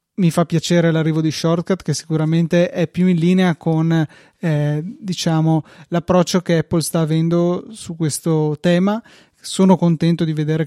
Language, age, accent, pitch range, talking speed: Italian, 20-39, native, 155-175 Hz, 150 wpm